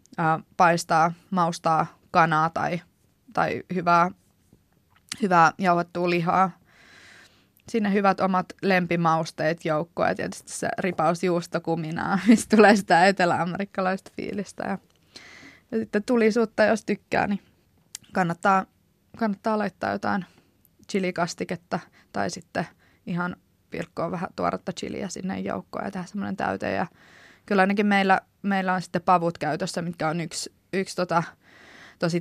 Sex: female